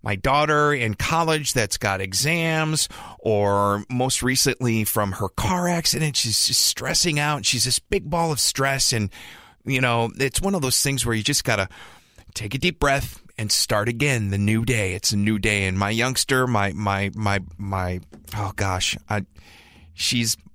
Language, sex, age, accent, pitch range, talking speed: English, male, 30-49, American, 100-130 Hz, 185 wpm